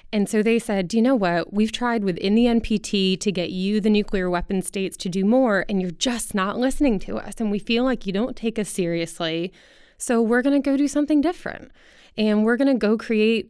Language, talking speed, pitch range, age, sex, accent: English, 235 wpm, 180-240 Hz, 20-39, female, American